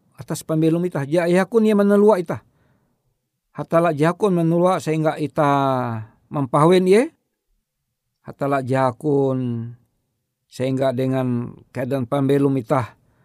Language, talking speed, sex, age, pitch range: Indonesian, 100 wpm, male, 50-69, 130-185 Hz